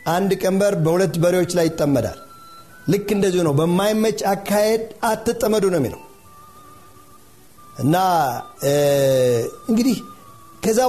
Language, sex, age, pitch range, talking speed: Amharic, male, 50-69, 165-215 Hz, 90 wpm